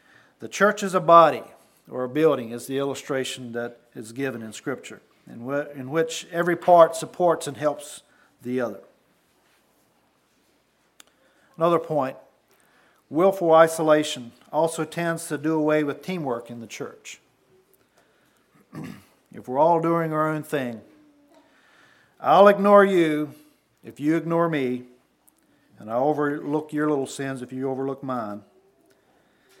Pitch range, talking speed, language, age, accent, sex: 125-165 Hz, 130 wpm, English, 50-69, American, male